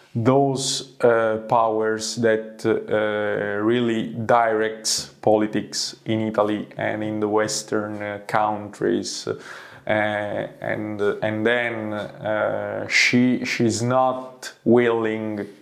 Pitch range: 105-115 Hz